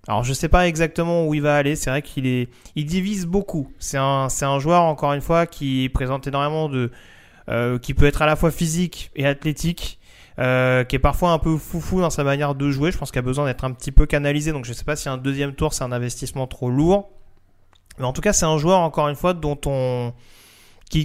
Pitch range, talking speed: 130-160 Hz, 250 wpm